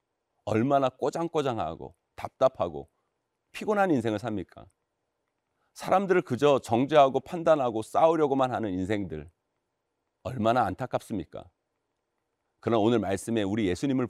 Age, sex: 40-59, male